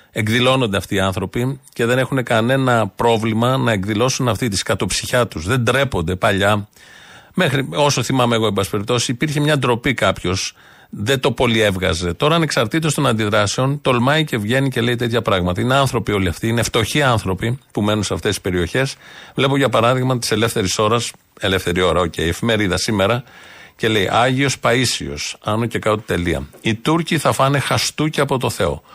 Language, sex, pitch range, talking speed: Greek, male, 105-130 Hz, 170 wpm